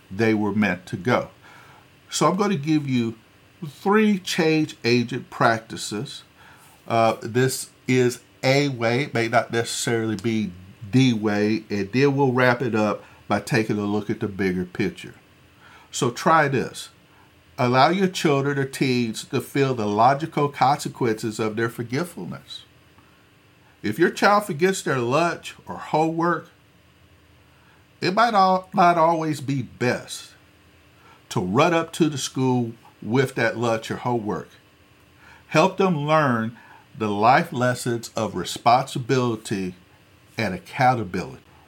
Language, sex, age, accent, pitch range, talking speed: English, male, 50-69, American, 110-145 Hz, 130 wpm